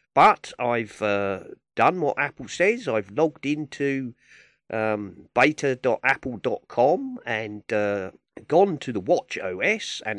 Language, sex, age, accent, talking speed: English, male, 40-59, British, 120 wpm